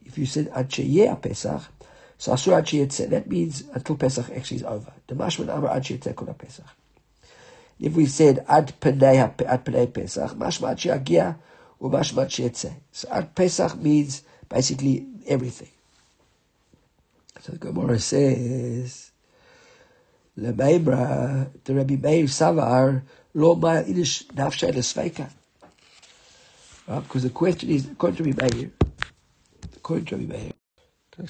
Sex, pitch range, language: male, 130-165 Hz, English